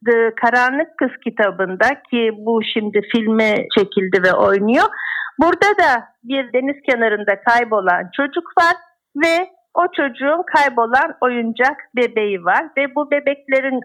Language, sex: Turkish, female